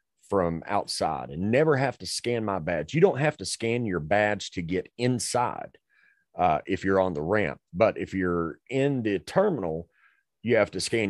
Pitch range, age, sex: 85-120 Hz, 30-49, male